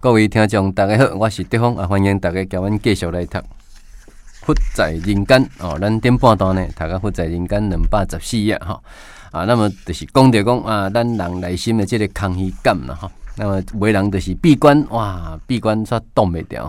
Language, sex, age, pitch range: Chinese, male, 20-39, 90-120 Hz